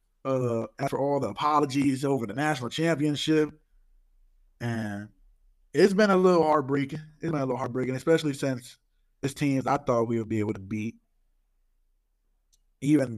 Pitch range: 110-135 Hz